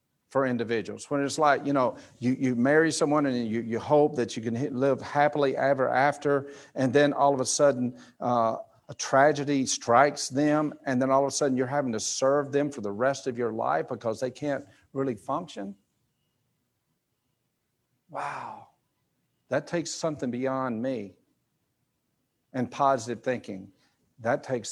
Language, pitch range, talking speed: English, 120-145 Hz, 160 wpm